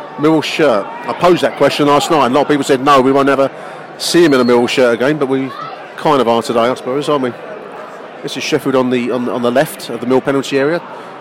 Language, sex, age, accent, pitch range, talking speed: English, male, 40-59, British, 135-175 Hz, 255 wpm